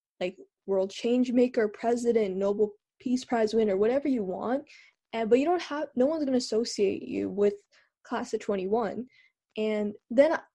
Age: 10-29